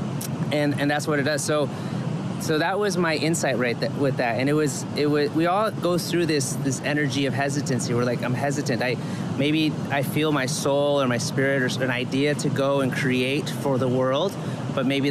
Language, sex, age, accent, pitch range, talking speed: English, male, 30-49, American, 135-165 Hz, 215 wpm